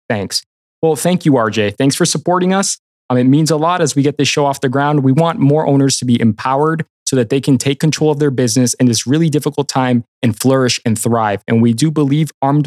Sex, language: male, English